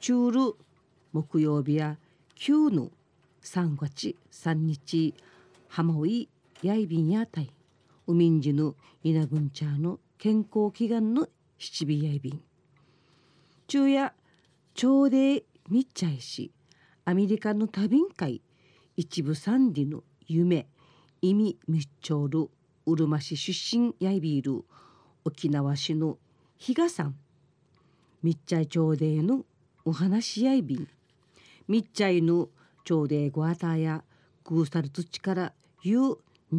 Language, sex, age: Japanese, female, 40-59